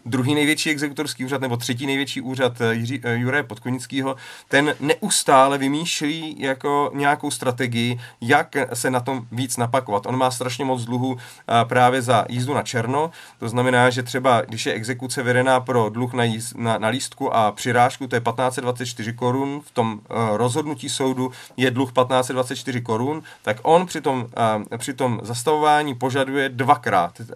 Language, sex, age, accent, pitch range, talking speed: Czech, male, 40-59, native, 120-140 Hz, 155 wpm